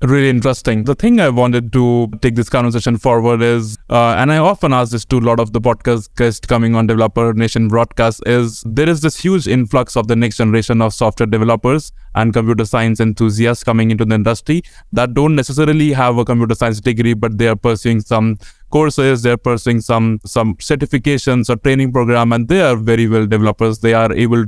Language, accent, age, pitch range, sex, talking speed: English, Indian, 20-39, 115-125 Hz, male, 200 wpm